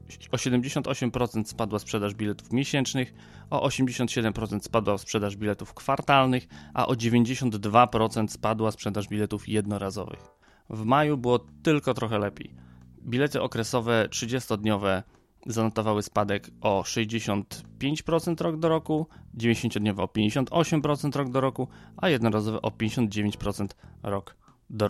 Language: Polish